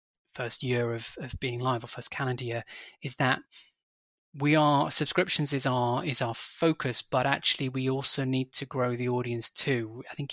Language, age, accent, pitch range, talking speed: English, 20-39, British, 125-150 Hz, 185 wpm